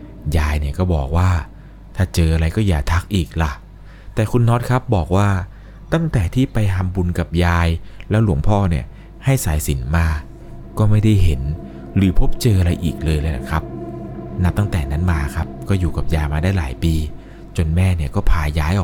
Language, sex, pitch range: Thai, male, 80-95 Hz